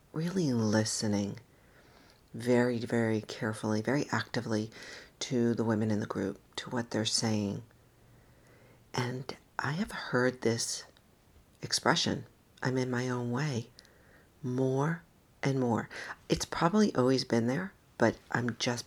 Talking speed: 125 wpm